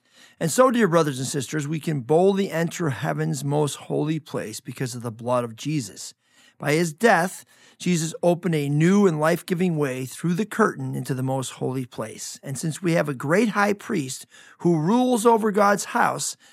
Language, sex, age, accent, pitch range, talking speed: English, male, 40-59, American, 135-185 Hz, 185 wpm